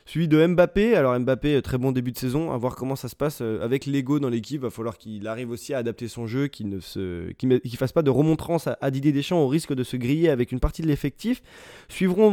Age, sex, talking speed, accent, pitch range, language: 20-39, male, 255 wpm, French, 125-155 Hz, French